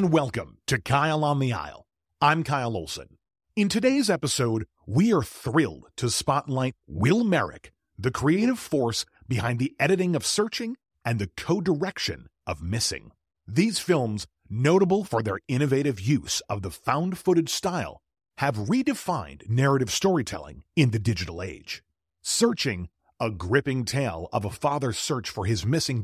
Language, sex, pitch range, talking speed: English, male, 105-165 Hz, 150 wpm